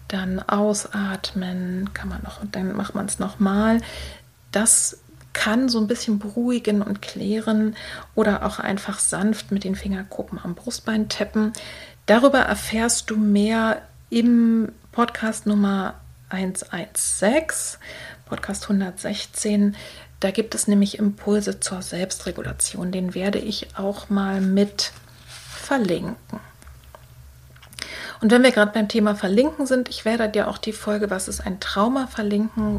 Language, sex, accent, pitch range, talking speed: German, female, German, 190-220 Hz, 130 wpm